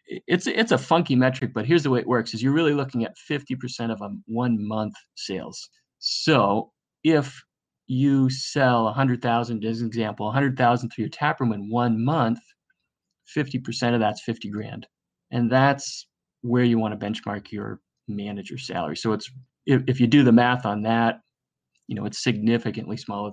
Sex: male